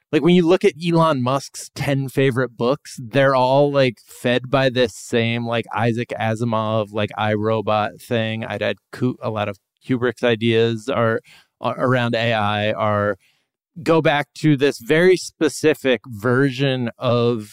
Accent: American